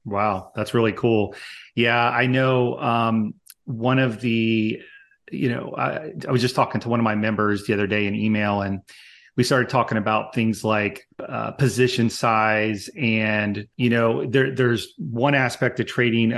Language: English